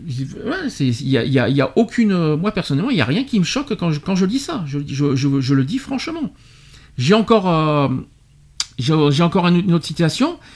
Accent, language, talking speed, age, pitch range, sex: French, French, 215 wpm, 50-69, 140-205 Hz, male